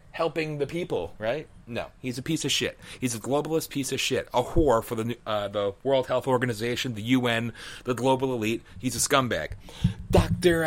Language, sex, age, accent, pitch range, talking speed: English, male, 30-49, American, 105-130 Hz, 190 wpm